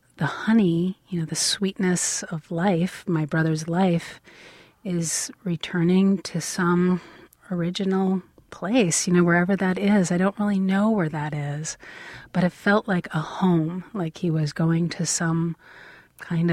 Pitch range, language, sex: 160-190 Hz, English, female